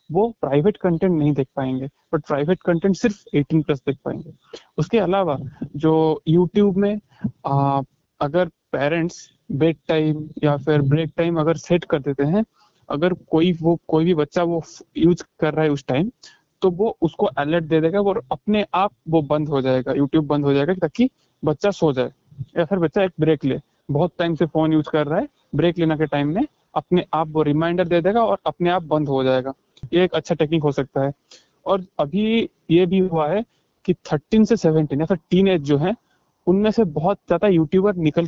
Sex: male